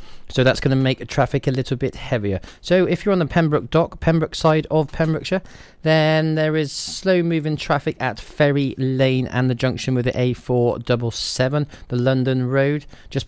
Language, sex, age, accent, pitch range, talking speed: English, male, 30-49, British, 120-145 Hz, 175 wpm